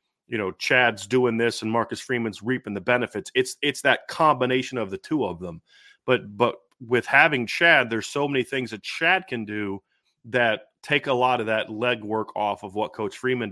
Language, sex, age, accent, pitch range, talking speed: English, male, 30-49, American, 105-130 Hz, 200 wpm